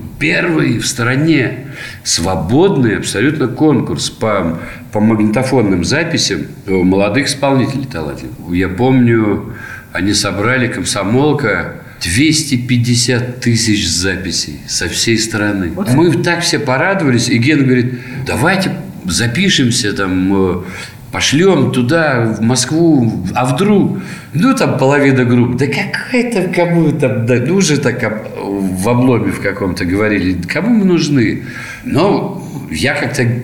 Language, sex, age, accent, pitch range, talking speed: Russian, male, 50-69, native, 100-130 Hz, 110 wpm